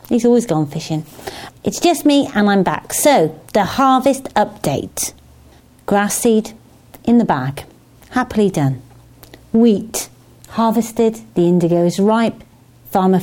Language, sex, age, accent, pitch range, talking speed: English, female, 40-59, British, 165-265 Hz, 125 wpm